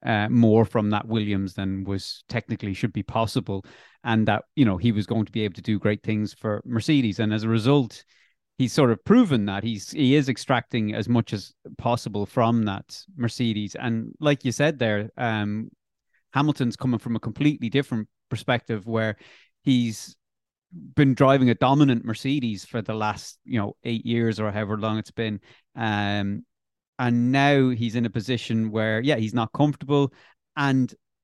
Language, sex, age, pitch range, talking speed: English, male, 30-49, 110-130 Hz, 175 wpm